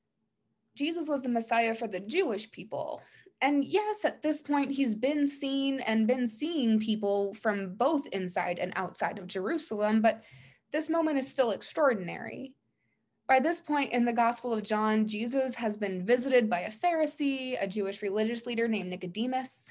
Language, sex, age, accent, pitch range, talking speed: English, female, 20-39, American, 205-260 Hz, 165 wpm